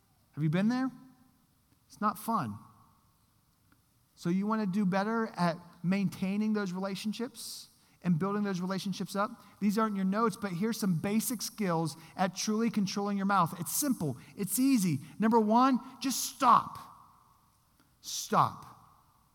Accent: American